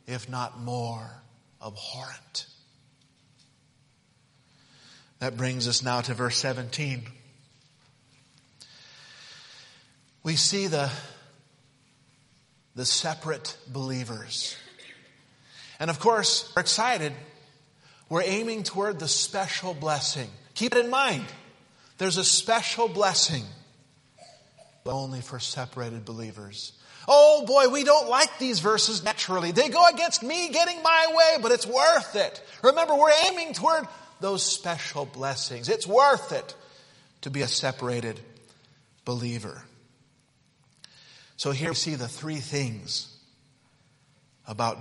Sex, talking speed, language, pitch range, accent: male, 110 wpm, English, 125-170 Hz, American